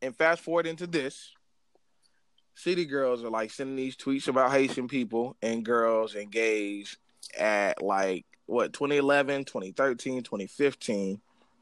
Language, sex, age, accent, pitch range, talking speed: English, male, 20-39, American, 115-175 Hz, 120 wpm